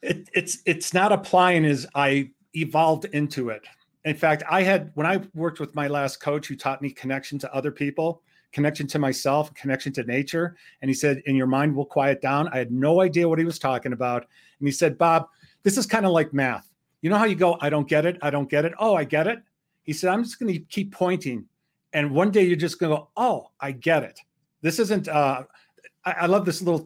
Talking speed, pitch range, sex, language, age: 240 wpm, 145-190 Hz, male, English, 40-59